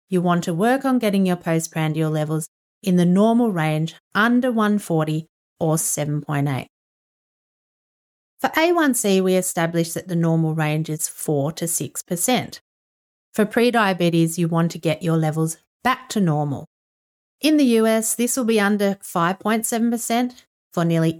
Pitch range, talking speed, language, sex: 165-225 Hz, 140 wpm, English, female